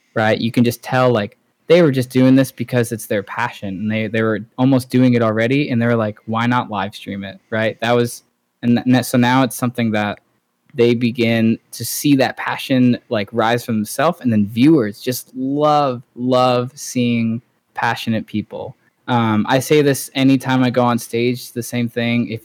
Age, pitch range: 20-39, 115-135 Hz